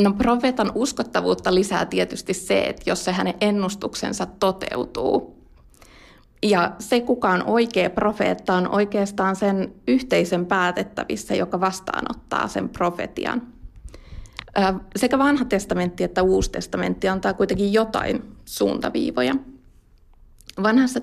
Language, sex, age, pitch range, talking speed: Finnish, female, 20-39, 180-210 Hz, 110 wpm